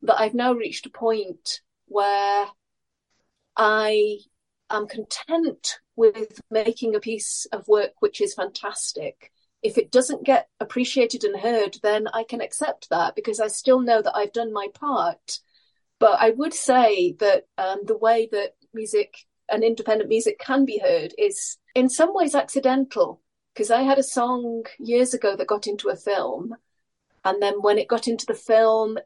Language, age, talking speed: English, 40-59, 165 wpm